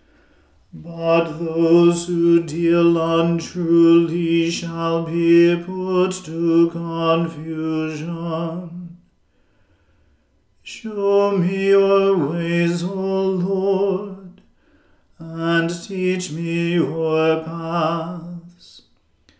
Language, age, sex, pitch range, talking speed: English, 40-59, male, 165-175 Hz, 65 wpm